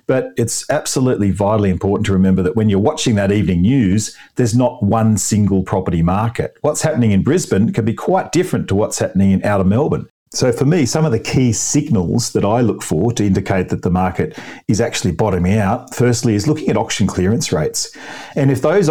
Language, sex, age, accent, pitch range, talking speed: English, male, 40-59, Australian, 95-120 Hz, 205 wpm